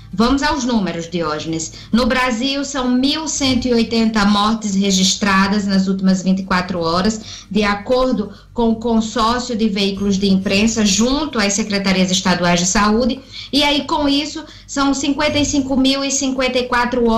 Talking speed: 120 wpm